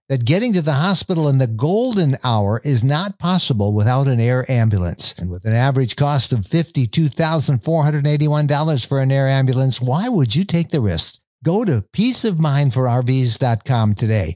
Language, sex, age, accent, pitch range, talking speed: English, male, 60-79, American, 115-160 Hz, 155 wpm